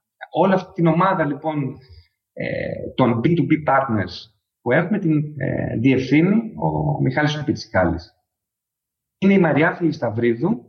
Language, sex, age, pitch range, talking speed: Greek, male, 30-49, 115-165 Hz, 105 wpm